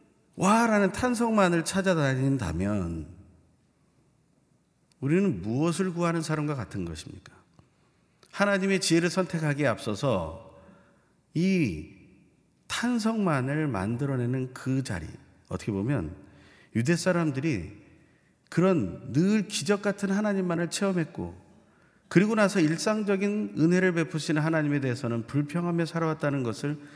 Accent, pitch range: native, 110-175 Hz